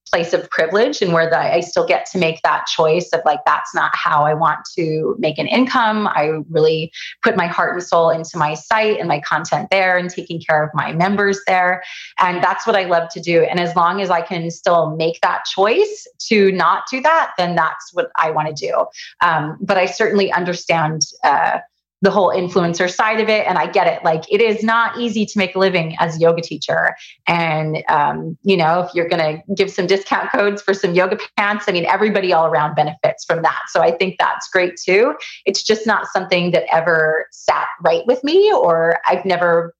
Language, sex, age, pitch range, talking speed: English, female, 30-49, 160-200 Hz, 215 wpm